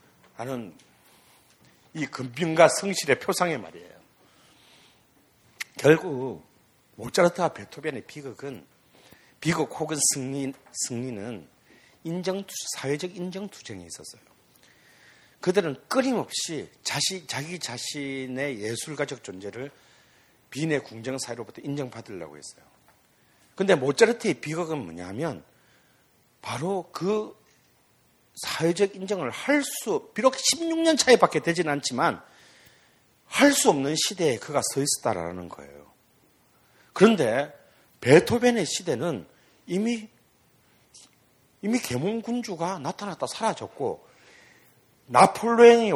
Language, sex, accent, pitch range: Korean, male, native, 135-200 Hz